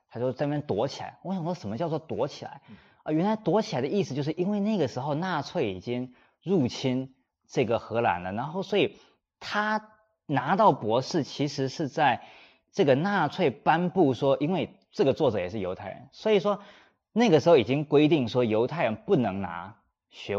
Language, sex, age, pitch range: Chinese, male, 20-39, 120-175 Hz